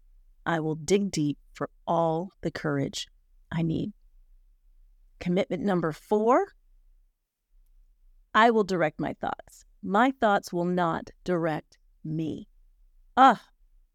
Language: English